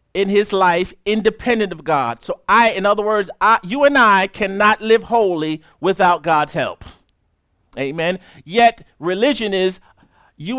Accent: American